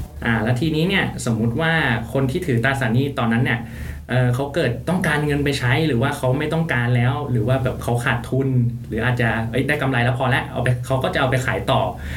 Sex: male